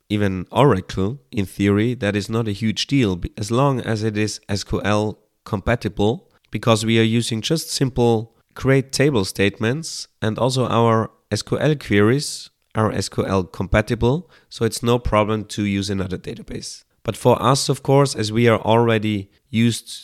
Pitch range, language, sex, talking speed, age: 100-115 Hz, English, male, 155 wpm, 30-49